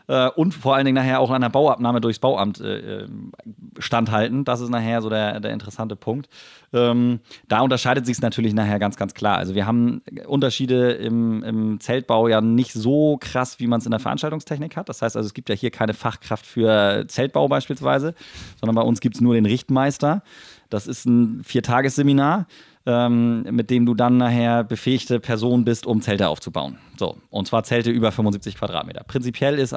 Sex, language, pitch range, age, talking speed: male, German, 110-125 Hz, 30-49, 185 wpm